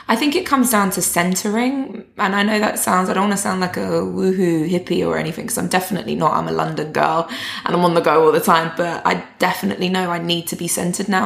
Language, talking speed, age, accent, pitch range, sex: English, 260 wpm, 20-39, British, 170-200 Hz, female